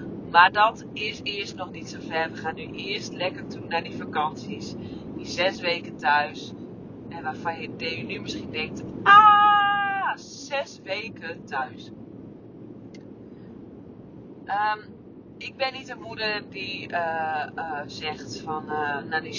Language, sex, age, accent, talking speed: Dutch, female, 30-49, Dutch, 135 wpm